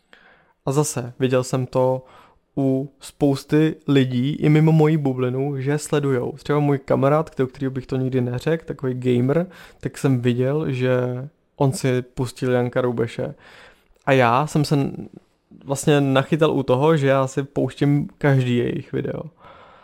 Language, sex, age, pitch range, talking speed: Czech, male, 20-39, 130-150 Hz, 145 wpm